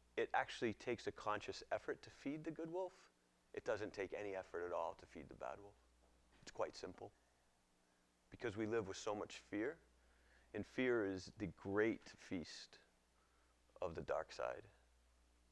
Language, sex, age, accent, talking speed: English, male, 30-49, American, 165 wpm